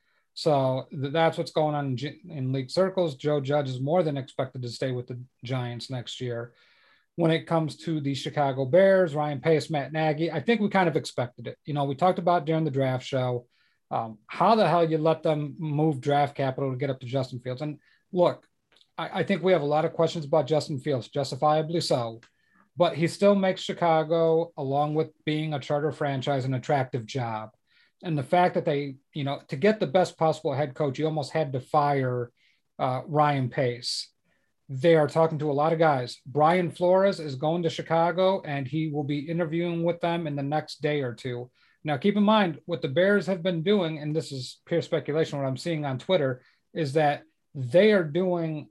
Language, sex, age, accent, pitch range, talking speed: English, male, 40-59, American, 135-170 Hz, 205 wpm